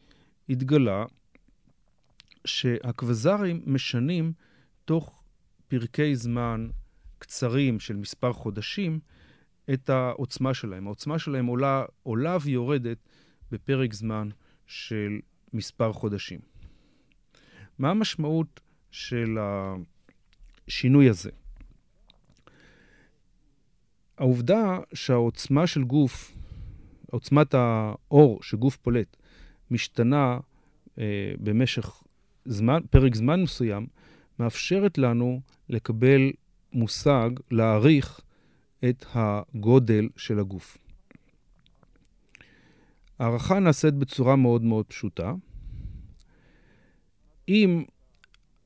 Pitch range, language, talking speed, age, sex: 110-140 Hz, Hebrew, 75 wpm, 40-59, male